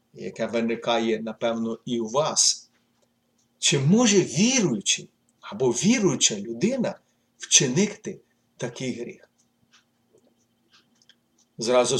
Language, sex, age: Ukrainian, male, 50-69